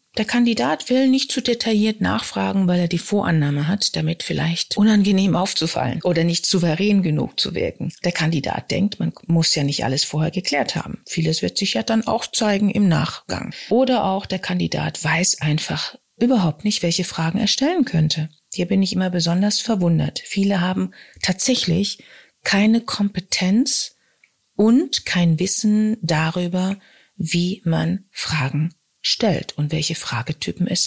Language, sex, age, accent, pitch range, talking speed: German, female, 40-59, German, 165-210 Hz, 155 wpm